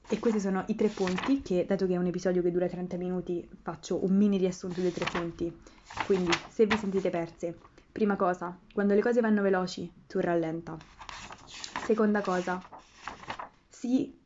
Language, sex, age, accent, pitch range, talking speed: Italian, female, 20-39, native, 180-205 Hz, 170 wpm